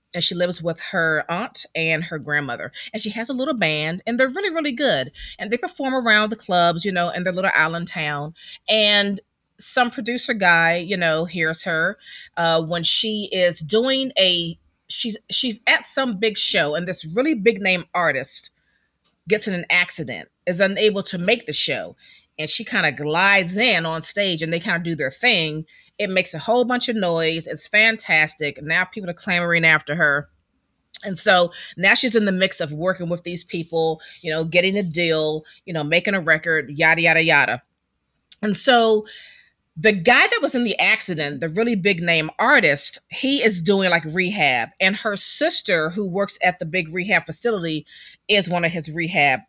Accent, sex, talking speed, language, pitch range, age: American, female, 190 wpm, English, 165-220 Hz, 30-49